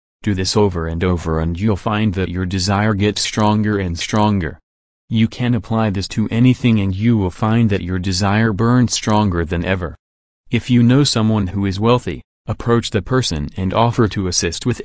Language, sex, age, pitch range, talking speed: English, male, 30-49, 90-115 Hz, 190 wpm